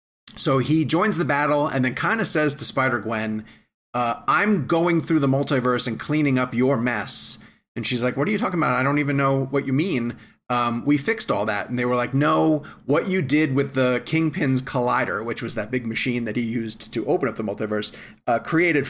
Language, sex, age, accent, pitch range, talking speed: English, male, 30-49, American, 120-150 Hz, 220 wpm